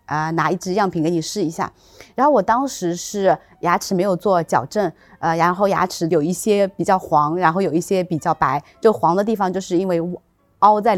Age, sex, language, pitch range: 20-39, female, Chinese, 170-220 Hz